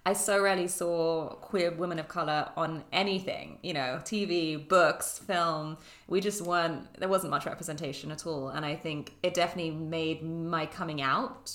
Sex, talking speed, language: female, 170 wpm, English